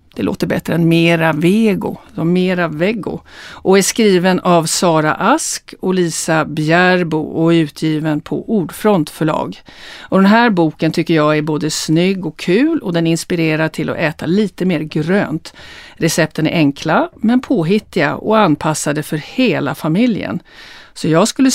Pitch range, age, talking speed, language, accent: 160-220 Hz, 50-69, 150 wpm, Swedish, native